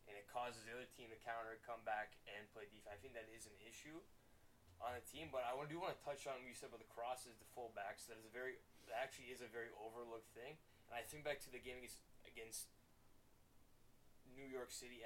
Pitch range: 115-135 Hz